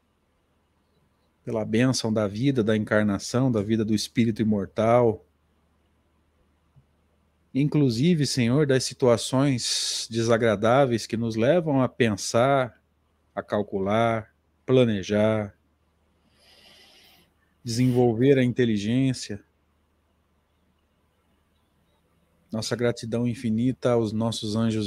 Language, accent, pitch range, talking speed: Portuguese, Brazilian, 85-120 Hz, 80 wpm